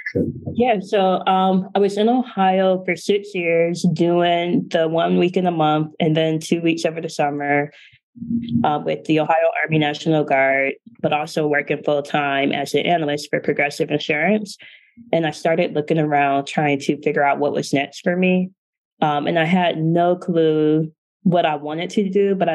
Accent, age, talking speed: American, 20-39, 180 wpm